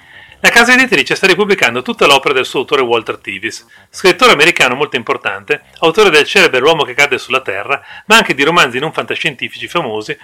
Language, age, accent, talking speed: Italian, 40-59, native, 190 wpm